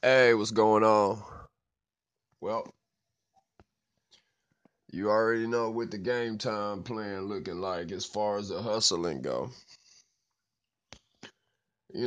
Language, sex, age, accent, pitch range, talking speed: English, male, 20-39, American, 100-130 Hz, 110 wpm